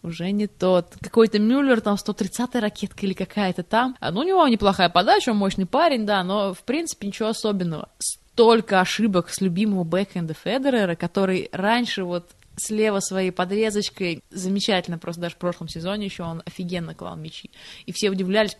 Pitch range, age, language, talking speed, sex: 175-215 Hz, 20-39, Russian, 165 wpm, female